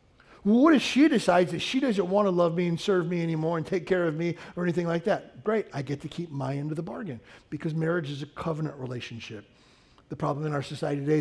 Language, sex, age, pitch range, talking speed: English, male, 40-59, 150-190 Hz, 245 wpm